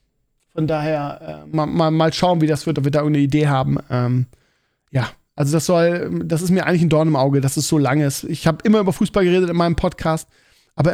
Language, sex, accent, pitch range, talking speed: German, male, German, 155-190 Hz, 240 wpm